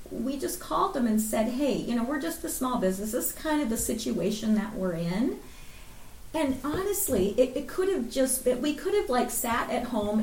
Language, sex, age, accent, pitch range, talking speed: English, female, 40-59, American, 210-265 Hz, 225 wpm